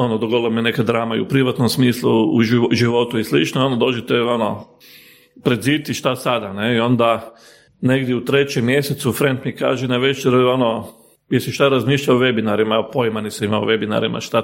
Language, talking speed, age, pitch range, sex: Croatian, 180 wpm, 40-59, 115-130 Hz, male